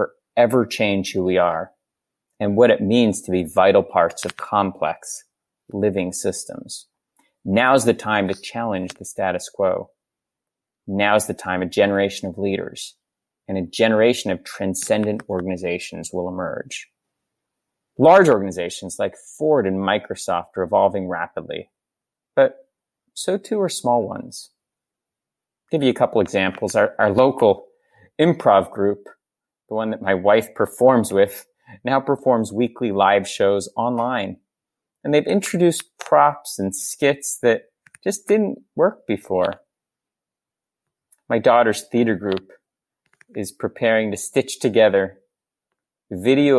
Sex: male